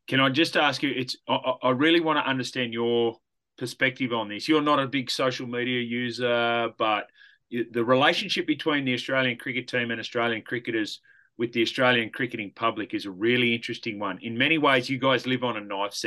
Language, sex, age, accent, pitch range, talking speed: English, male, 30-49, Australian, 115-150 Hz, 200 wpm